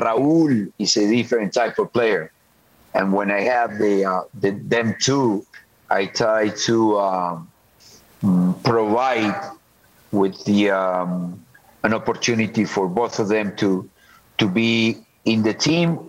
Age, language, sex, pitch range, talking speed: 50-69, English, male, 100-120 Hz, 135 wpm